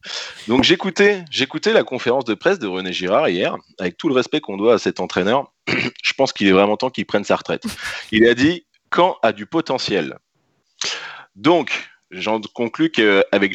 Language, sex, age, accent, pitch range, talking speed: French, male, 30-49, French, 100-145 Hz, 190 wpm